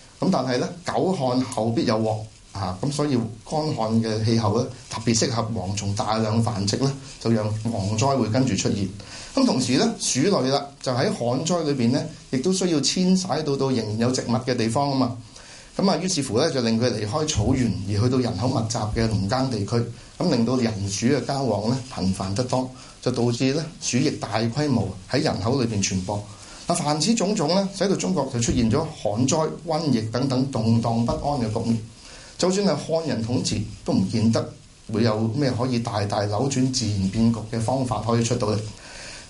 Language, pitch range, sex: Chinese, 110-135 Hz, male